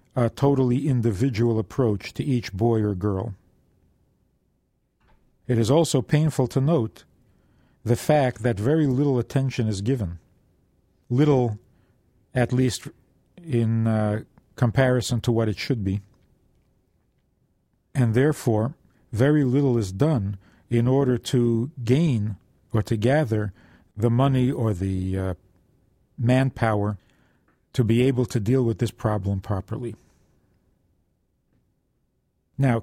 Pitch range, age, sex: 105-135 Hz, 50-69, male